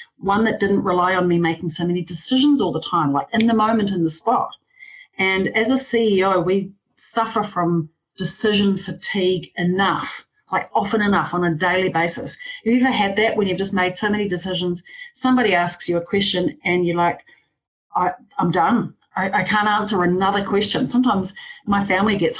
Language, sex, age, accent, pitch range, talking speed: English, female, 40-59, Australian, 175-225 Hz, 185 wpm